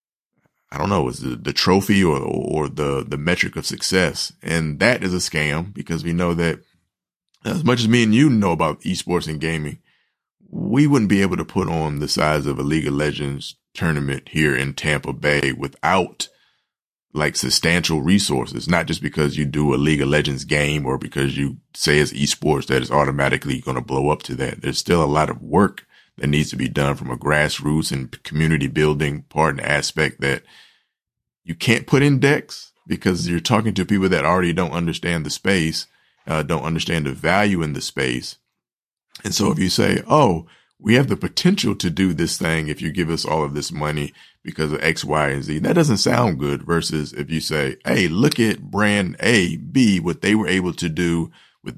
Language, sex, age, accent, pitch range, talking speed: English, male, 30-49, American, 75-85 Hz, 205 wpm